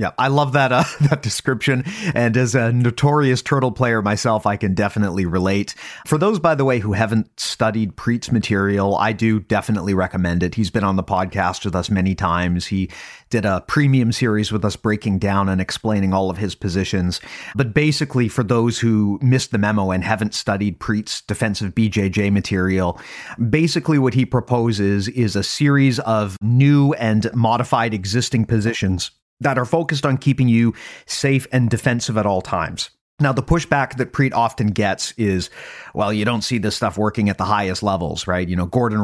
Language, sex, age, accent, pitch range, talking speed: English, male, 30-49, American, 100-130 Hz, 185 wpm